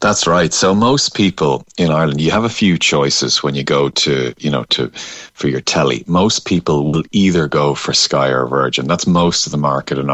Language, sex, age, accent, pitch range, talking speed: English, male, 30-49, Irish, 70-85 Hz, 220 wpm